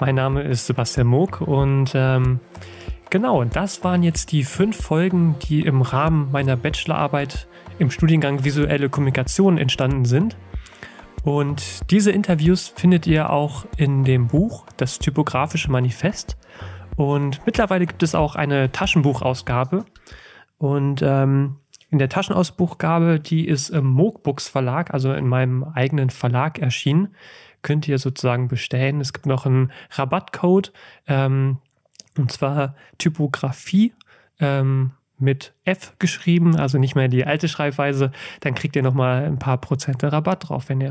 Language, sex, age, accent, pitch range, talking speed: German, male, 30-49, German, 130-165 Hz, 140 wpm